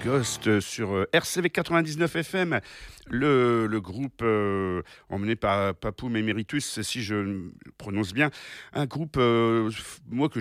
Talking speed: 125 wpm